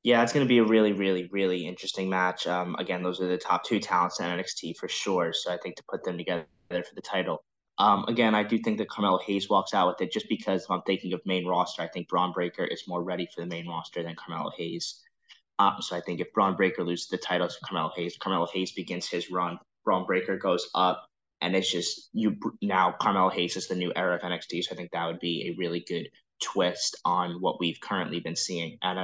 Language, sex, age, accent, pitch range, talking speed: English, male, 10-29, American, 90-100 Hz, 245 wpm